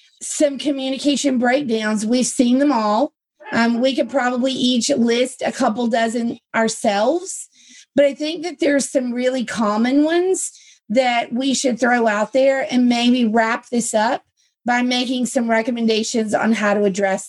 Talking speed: 155 wpm